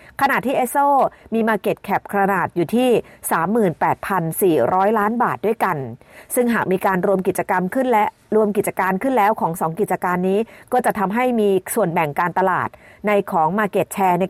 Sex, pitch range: female, 180-235 Hz